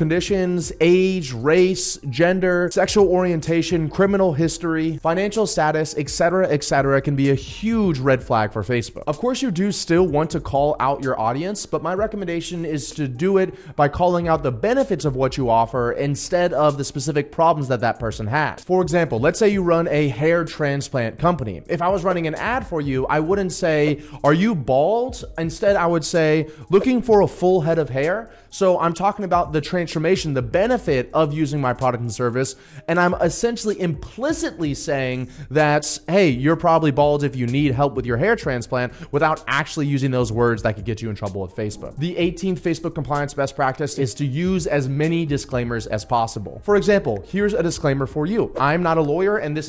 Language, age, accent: English, 30-49, American